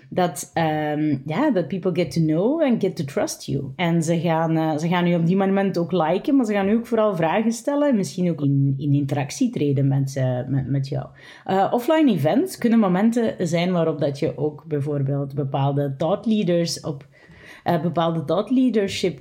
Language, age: Dutch, 30-49